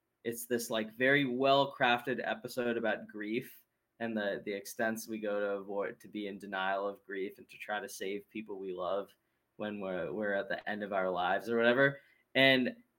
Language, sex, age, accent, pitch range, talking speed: English, male, 10-29, American, 120-155 Hz, 200 wpm